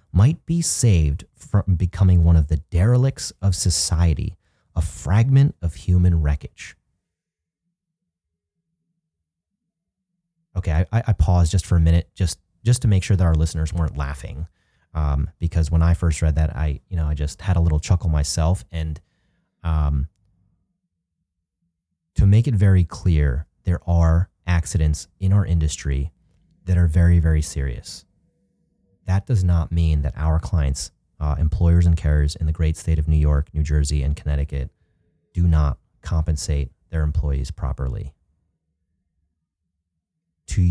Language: English